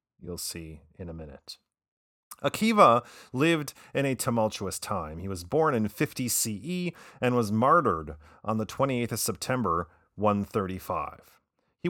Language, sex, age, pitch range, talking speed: English, male, 30-49, 90-130 Hz, 135 wpm